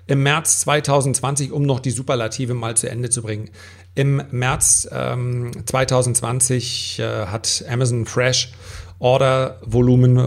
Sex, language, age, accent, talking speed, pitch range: male, German, 40-59, German, 125 wpm, 105-130 Hz